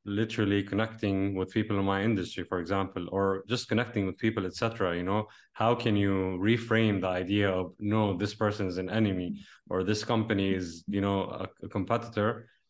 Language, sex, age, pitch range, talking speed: English, male, 20-39, 95-110 Hz, 185 wpm